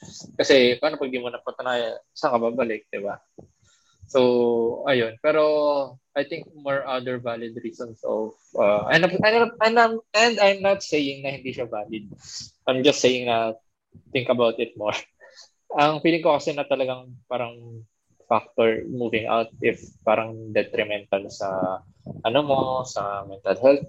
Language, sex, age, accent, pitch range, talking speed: Filipino, male, 20-39, native, 110-140 Hz, 155 wpm